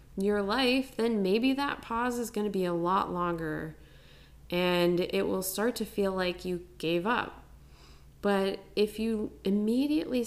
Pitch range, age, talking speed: 180-230 Hz, 20-39, 160 wpm